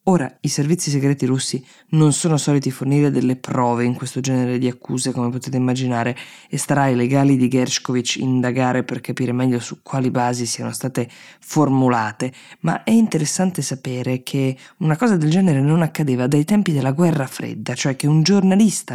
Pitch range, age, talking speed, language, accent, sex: 130-160 Hz, 20-39, 175 wpm, Italian, native, female